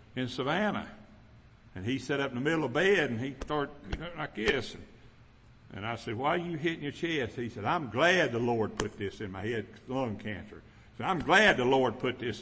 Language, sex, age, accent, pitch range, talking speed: English, male, 60-79, American, 110-150 Hz, 225 wpm